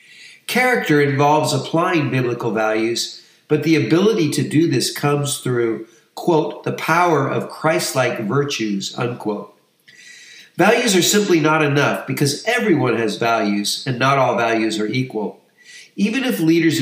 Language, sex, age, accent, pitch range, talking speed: English, male, 50-69, American, 120-160 Hz, 135 wpm